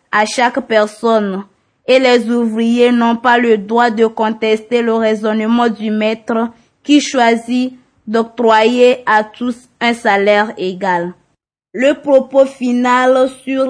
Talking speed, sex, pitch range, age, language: 125 wpm, female, 225-255 Hz, 20-39, French